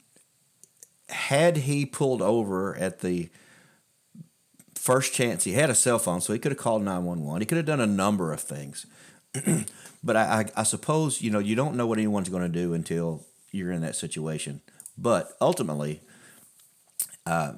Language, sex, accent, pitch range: English, male, American, 90-120 Hz